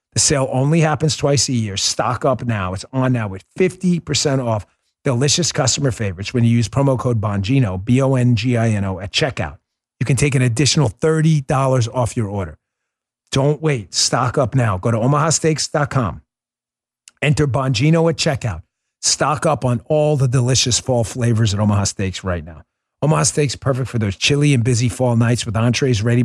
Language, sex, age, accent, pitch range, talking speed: English, male, 40-59, American, 100-140 Hz, 170 wpm